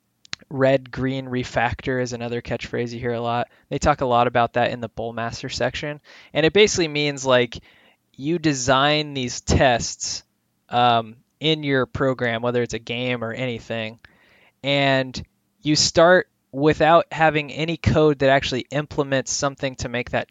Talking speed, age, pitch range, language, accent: 155 wpm, 20-39, 120-145 Hz, English, American